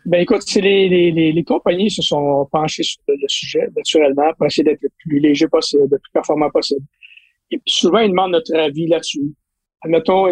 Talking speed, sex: 205 wpm, male